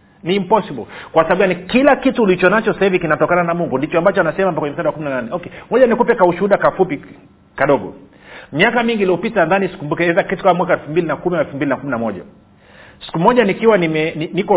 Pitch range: 145-195 Hz